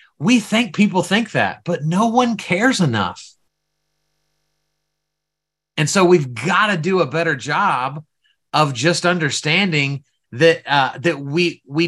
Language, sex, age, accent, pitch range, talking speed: English, male, 30-49, American, 155-195 Hz, 135 wpm